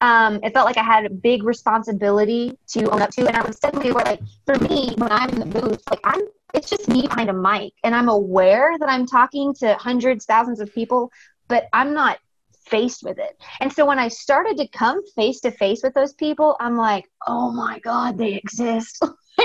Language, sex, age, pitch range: English, female, 30-49, 210-275 Hz